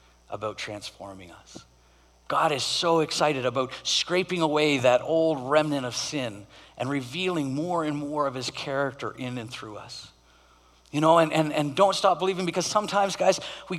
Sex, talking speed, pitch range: male, 170 wpm, 125-160 Hz